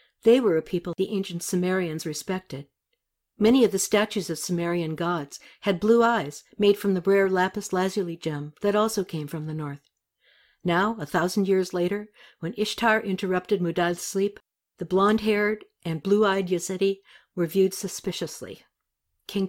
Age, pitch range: 60-79, 160-205 Hz